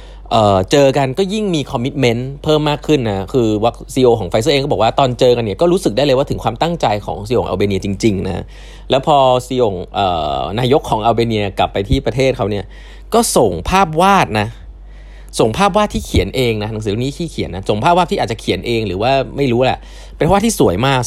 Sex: male